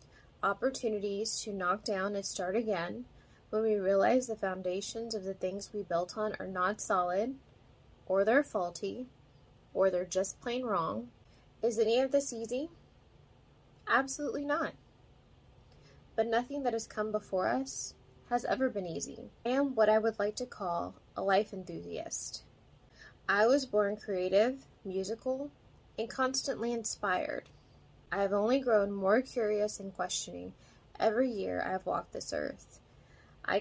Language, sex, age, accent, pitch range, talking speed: English, female, 10-29, American, 190-245 Hz, 145 wpm